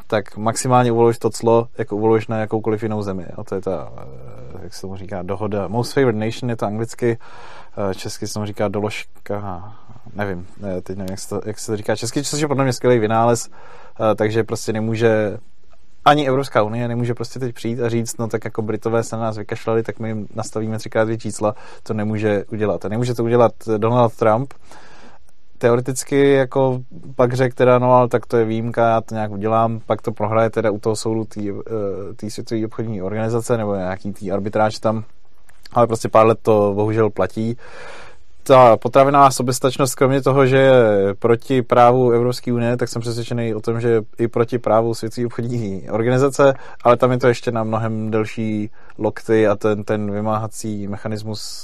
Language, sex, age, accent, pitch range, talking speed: Czech, male, 20-39, native, 105-120 Hz, 185 wpm